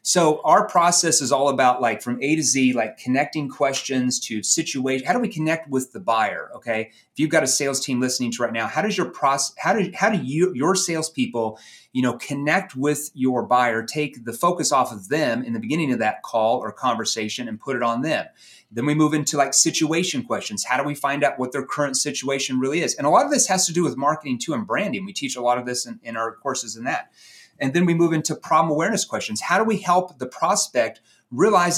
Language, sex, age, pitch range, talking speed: English, male, 30-49, 130-175 Hz, 240 wpm